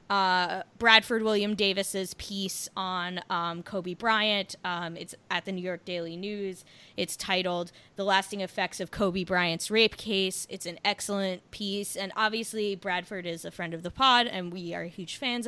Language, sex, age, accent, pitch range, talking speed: English, female, 20-39, American, 175-205 Hz, 175 wpm